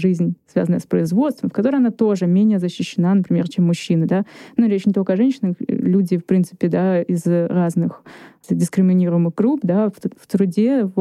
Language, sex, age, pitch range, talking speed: Russian, female, 20-39, 180-215 Hz, 180 wpm